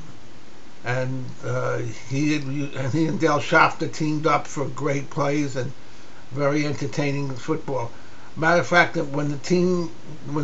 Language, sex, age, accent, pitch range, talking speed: English, male, 60-79, American, 135-160 Hz, 130 wpm